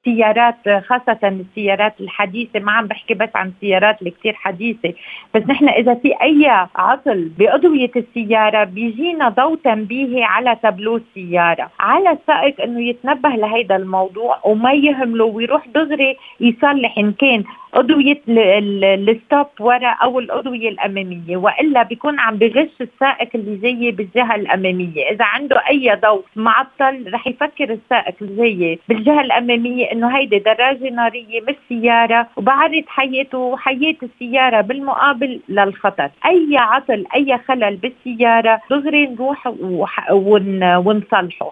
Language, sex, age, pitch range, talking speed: Arabic, female, 40-59, 210-270 Hz, 125 wpm